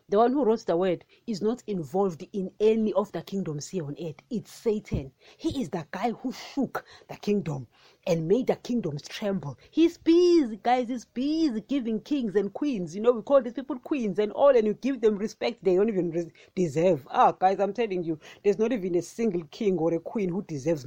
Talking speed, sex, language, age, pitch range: 215 wpm, female, English, 30-49, 180-245 Hz